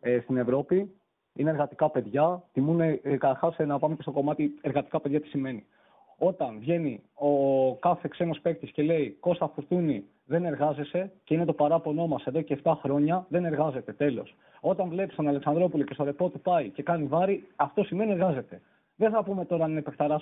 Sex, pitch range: male, 140-175 Hz